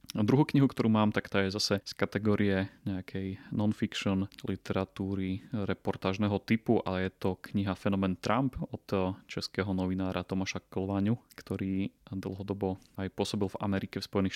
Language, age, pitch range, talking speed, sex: Slovak, 30-49, 95-105 Hz, 140 wpm, male